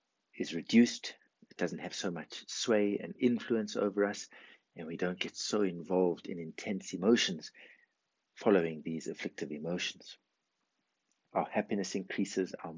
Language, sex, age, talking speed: English, male, 60-79, 135 wpm